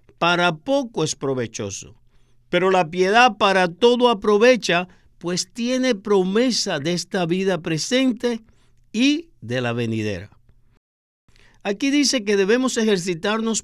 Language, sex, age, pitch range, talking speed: Spanish, male, 50-69, 130-210 Hz, 115 wpm